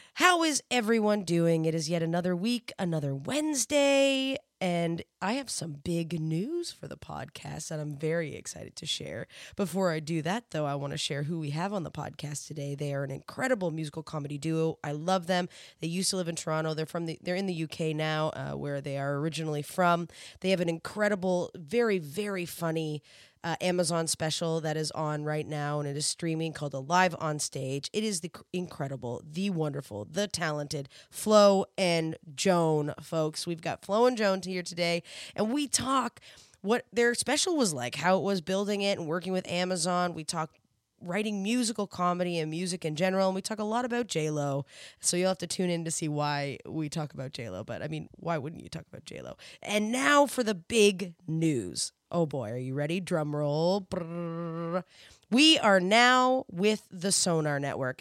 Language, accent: English, American